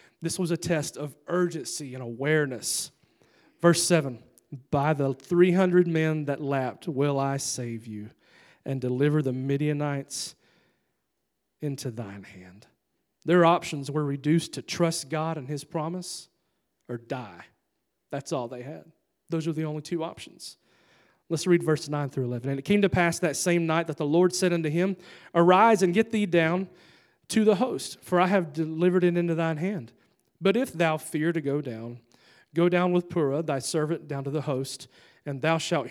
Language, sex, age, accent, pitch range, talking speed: English, male, 40-59, American, 145-180 Hz, 175 wpm